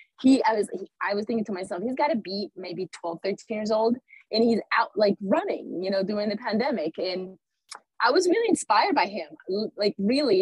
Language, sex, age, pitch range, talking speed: English, female, 20-39, 190-275 Hz, 205 wpm